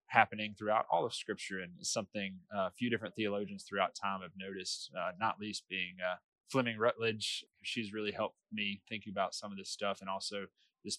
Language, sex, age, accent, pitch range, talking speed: English, male, 20-39, American, 95-110 Hz, 195 wpm